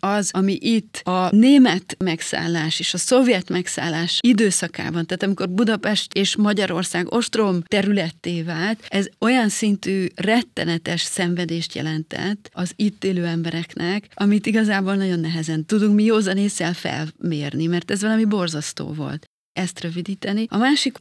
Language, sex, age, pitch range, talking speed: Hungarian, female, 30-49, 170-210 Hz, 130 wpm